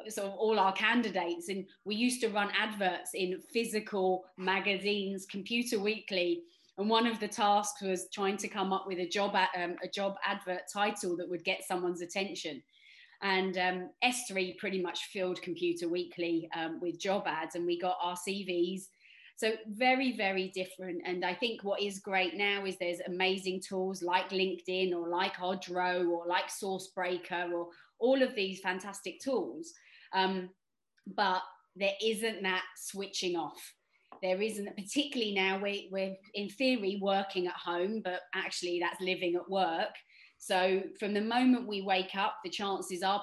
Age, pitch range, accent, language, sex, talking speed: 20-39, 180-205 Hz, British, English, female, 165 wpm